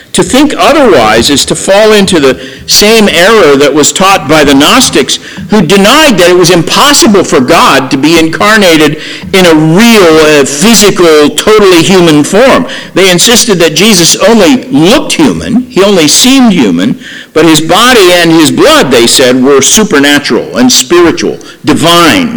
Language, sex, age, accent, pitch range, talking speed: English, male, 50-69, American, 140-230 Hz, 155 wpm